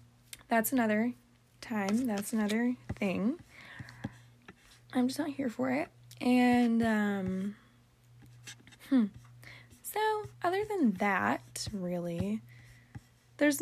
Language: English